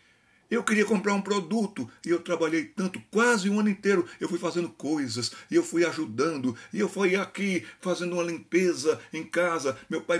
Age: 60-79